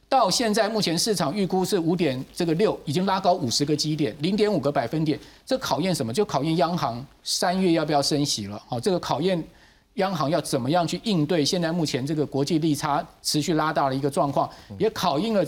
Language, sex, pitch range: Chinese, male, 150-200 Hz